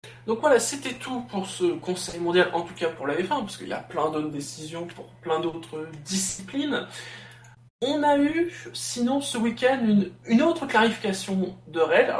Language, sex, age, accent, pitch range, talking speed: French, male, 20-39, French, 170-230 Hz, 185 wpm